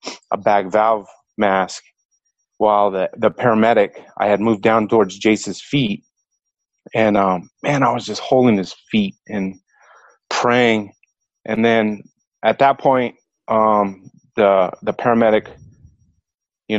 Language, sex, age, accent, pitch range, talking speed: English, male, 30-49, American, 100-115 Hz, 130 wpm